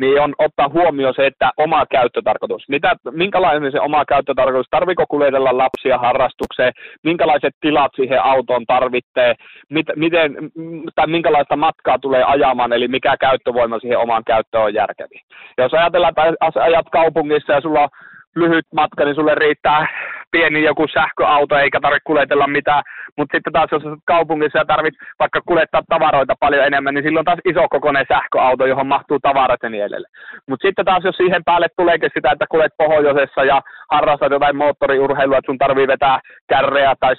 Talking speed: 165 wpm